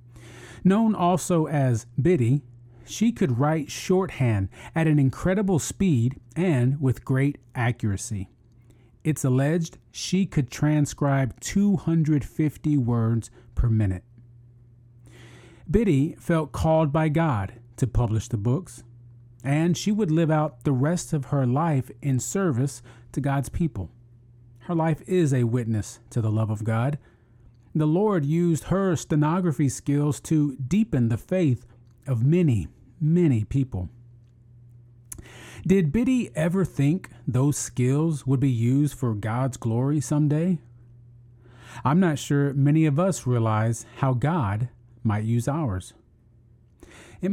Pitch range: 120-155 Hz